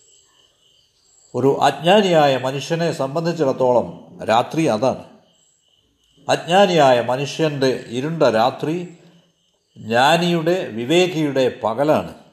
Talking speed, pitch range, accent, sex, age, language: 65 wpm, 130-175 Hz, native, male, 50-69, Malayalam